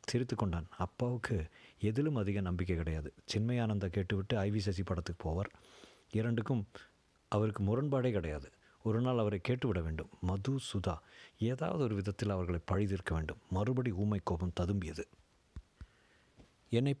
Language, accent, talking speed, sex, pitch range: Tamil, native, 115 wpm, male, 100-120 Hz